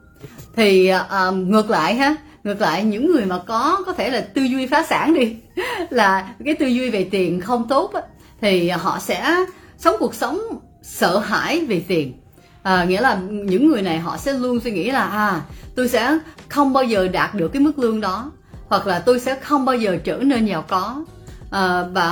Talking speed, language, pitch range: 195 wpm, Vietnamese, 180-255 Hz